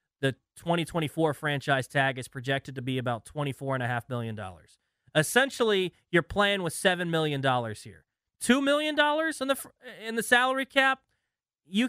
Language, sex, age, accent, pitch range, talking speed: English, male, 30-49, American, 160-215 Hz, 130 wpm